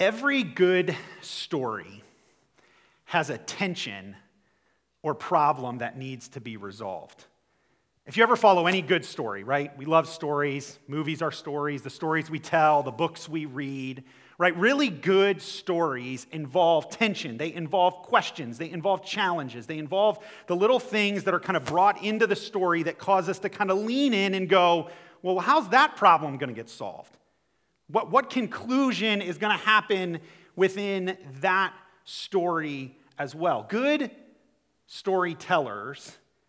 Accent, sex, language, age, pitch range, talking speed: American, male, English, 30-49, 145-195 Hz, 150 wpm